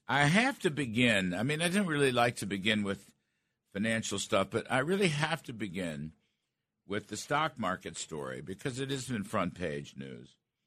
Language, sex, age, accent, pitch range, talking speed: English, male, 60-79, American, 85-130 Hz, 185 wpm